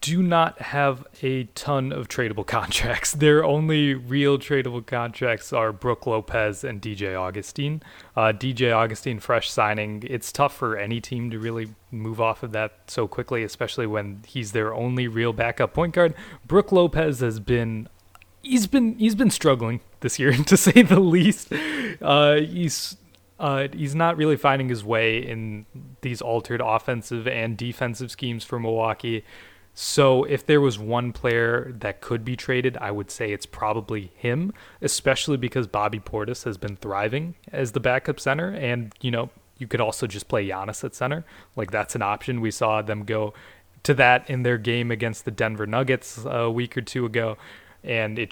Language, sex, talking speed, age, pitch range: English, male, 175 wpm, 20-39, 110-140 Hz